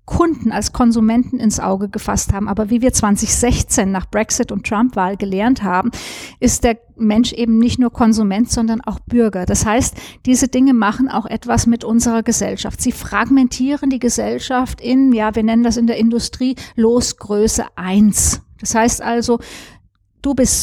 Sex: female